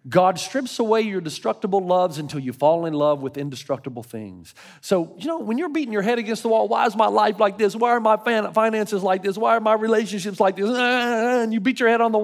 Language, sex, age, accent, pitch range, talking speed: English, male, 40-59, American, 210-300 Hz, 245 wpm